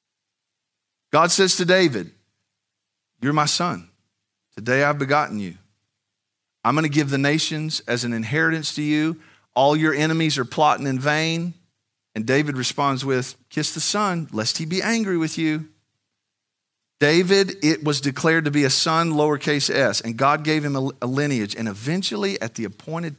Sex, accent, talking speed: male, American, 165 wpm